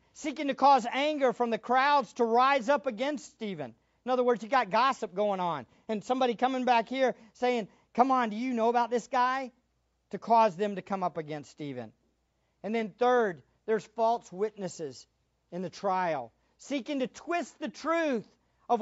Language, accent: English, American